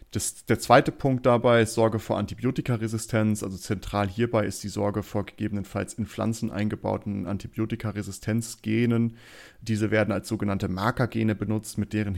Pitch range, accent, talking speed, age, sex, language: 100-115 Hz, German, 145 wpm, 30-49, male, German